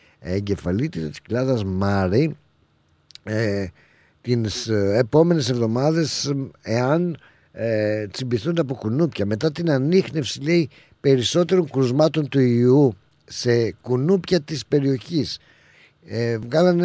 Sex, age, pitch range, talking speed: male, 50-69, 115-155 Hz, 95 wpm